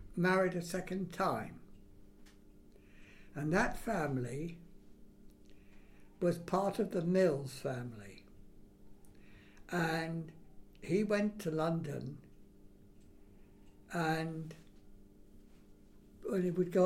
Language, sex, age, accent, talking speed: English, male, 60-79, British, 80 wpm